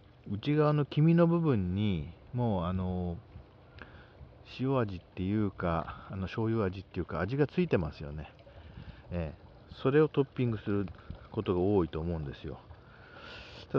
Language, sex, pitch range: Japanese, male, 90-115 Hz